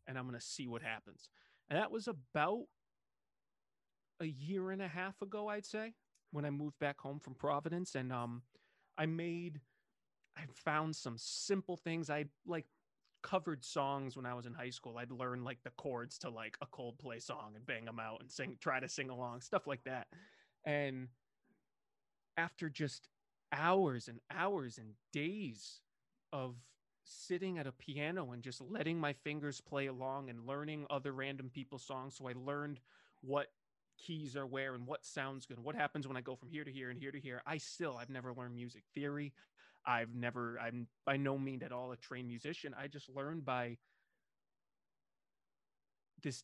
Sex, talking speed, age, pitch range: male, 185 wpm, 30-49, 125-150 Hz